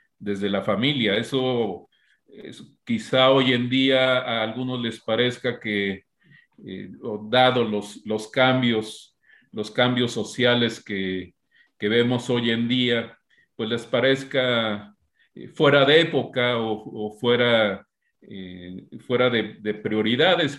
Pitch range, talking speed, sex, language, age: 110-135 Hz, 120 wpm, male, Spanish, 50-69